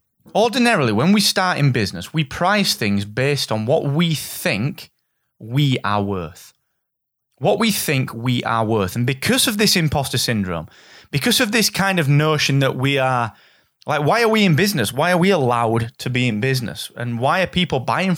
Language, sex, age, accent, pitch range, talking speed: English, male, 30-49, British, 120-160 Hz, 190 wpm